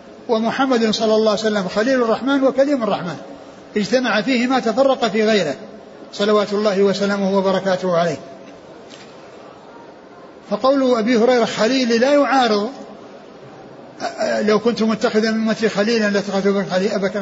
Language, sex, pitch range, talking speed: Arabic, male, 210-260 Hz, 120 wpm